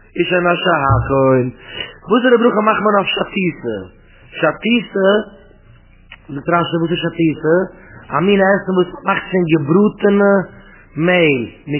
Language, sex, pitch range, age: English, male, 150-195 Hz, 30-49